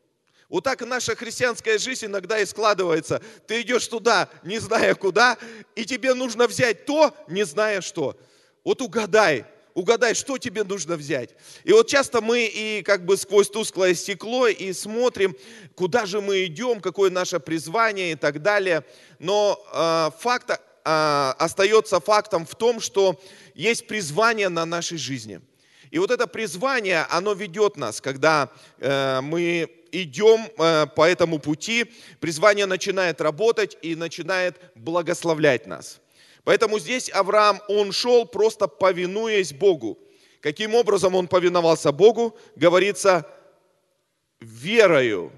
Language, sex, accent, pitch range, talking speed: Russian, male, native, 165-225 Hz, 135 wpm